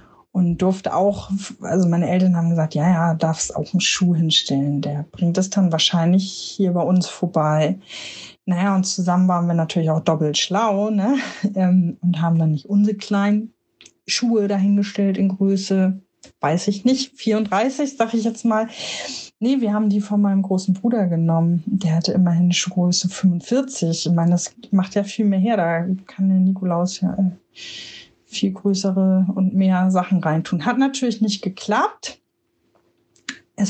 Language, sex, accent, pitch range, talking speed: German, female, German, 175-205 Hz, 160 wpm